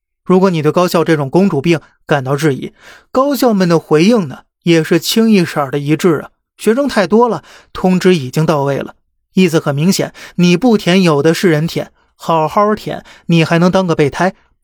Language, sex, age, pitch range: Chinese, male, 30-49, 155-200 Hz